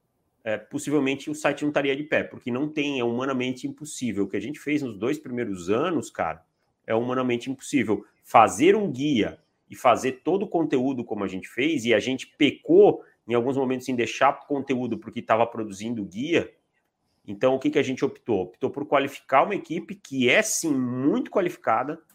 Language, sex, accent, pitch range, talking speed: Portuguese, male, Brazilian, 115-160 Hz, 185 wpm